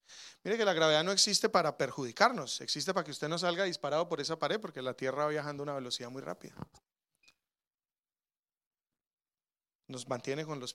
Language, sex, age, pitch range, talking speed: English, male, 30-49, 150-210 Hz, 180 wpm